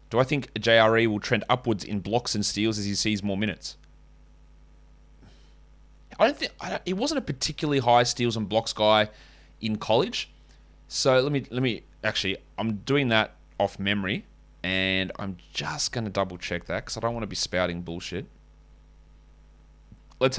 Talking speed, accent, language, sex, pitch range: 165 wpm, Australian, English, male, 100-120 Hz